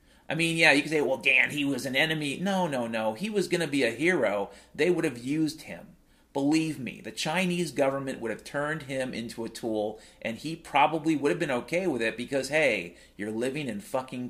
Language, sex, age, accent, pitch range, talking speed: English, male, 30-49, American, 125-185 Hz, 225 wpm